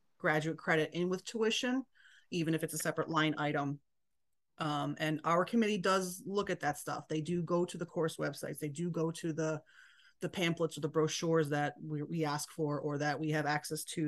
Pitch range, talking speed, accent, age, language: 150-175 Hz, 210 wpm, American, 30-49, English